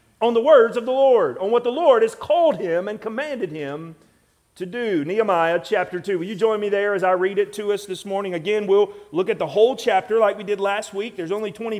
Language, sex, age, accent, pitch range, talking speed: English, male, 40-59, American, 190-270 Hz, 250 wpm